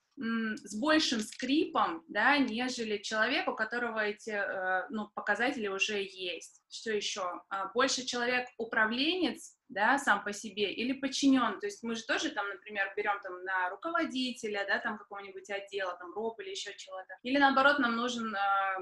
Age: 20-39